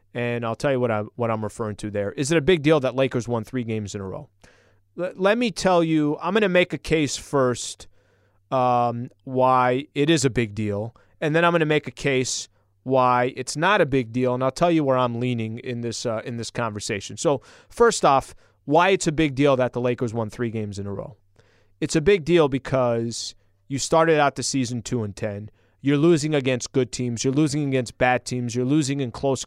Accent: American